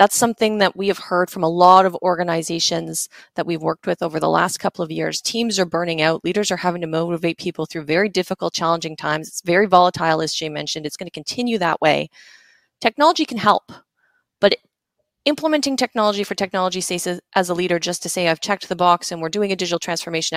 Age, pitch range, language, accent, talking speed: 20-39, 165-200 Hz, English, American, 220 wpm